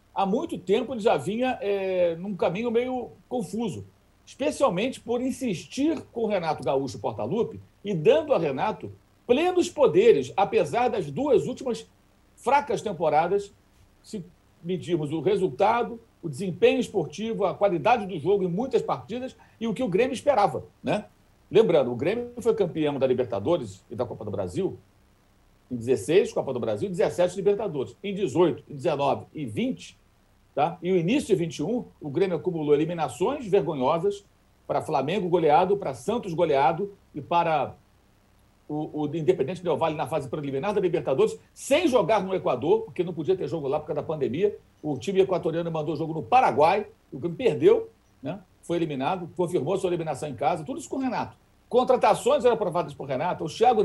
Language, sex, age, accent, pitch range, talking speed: Portuguese, male, 60-79, Brazilian, 155-240 Hz, 165 wpm